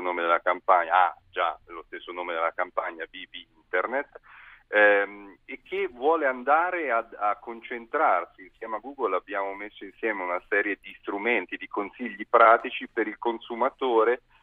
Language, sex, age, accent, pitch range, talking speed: Italian, male, 40-59, native, 95-125 Hz, 150 wpm